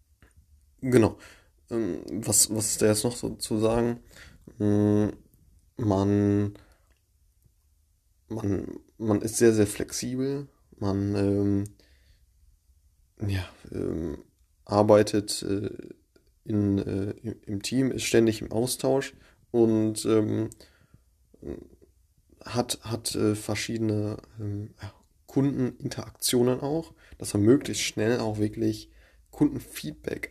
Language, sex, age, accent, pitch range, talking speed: German, male, 20-39, German, 95-110 Hz, 95 wpm